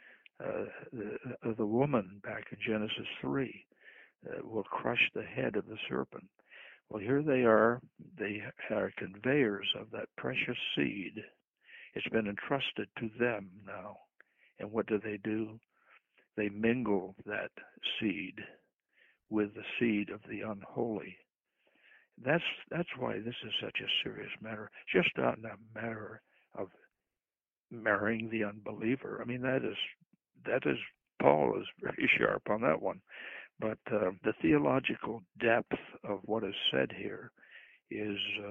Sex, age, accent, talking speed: male, 60-79, American, 140 wpm